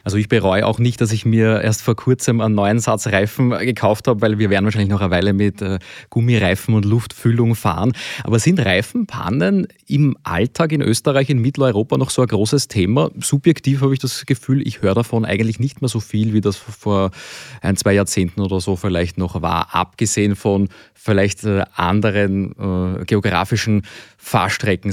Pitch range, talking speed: 100-120 Hz, 180 wpm